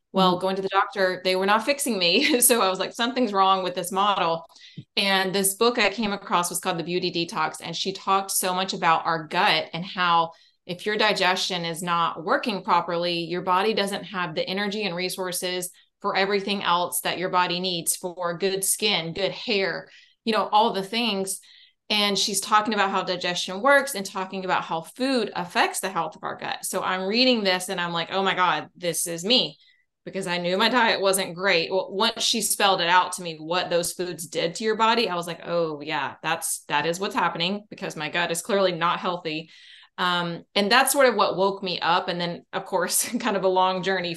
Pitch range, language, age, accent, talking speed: 175-200 Hz, English, 20-39, American, 220 wpm